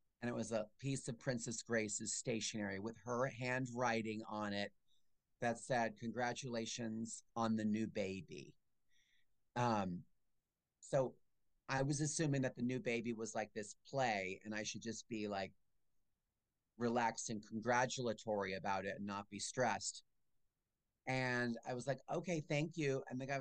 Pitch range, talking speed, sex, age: 110-140 Hz, 150 wpm, male, 30-49